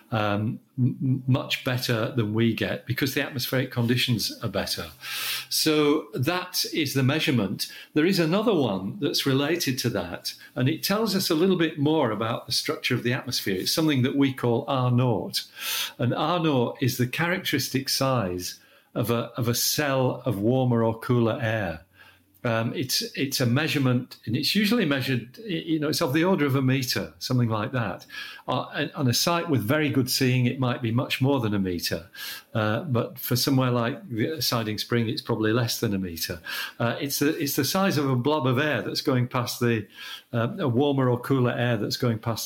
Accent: British